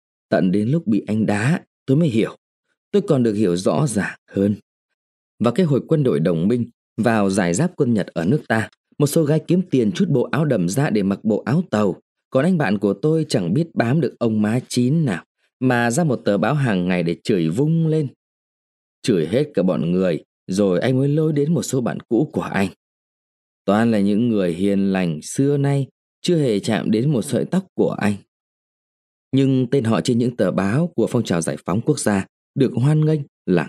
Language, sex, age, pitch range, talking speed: Vietnamese, male, 20-39, 100-160 Hz, 215 wpm